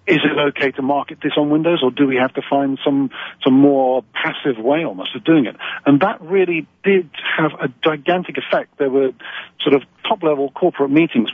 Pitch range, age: 135-160 Hz, 50-69